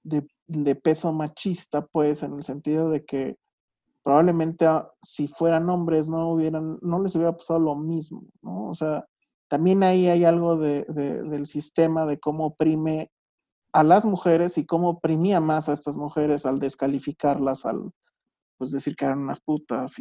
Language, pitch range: Spanish, 150-190 Hz